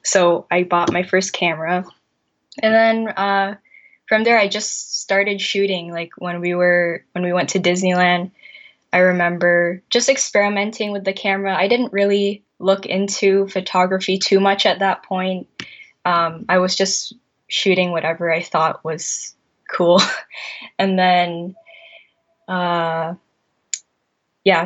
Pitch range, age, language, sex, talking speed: 175-215 Hz, 10-29, English, female, 135 wpm